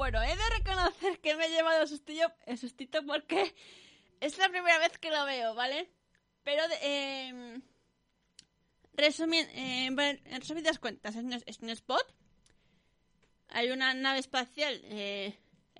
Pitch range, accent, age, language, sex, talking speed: 220-285 Hz, Spanish, 20-39, Spanish, female, 135 wpm